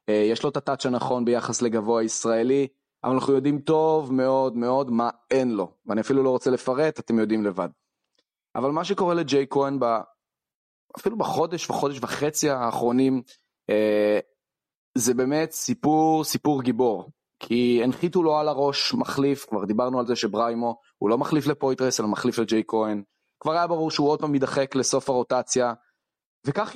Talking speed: 165 wpm